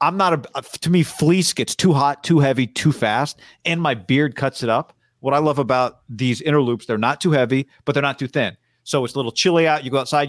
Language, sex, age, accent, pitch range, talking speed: English, male, 40-59, American, 120-150 Hz, 255 wpm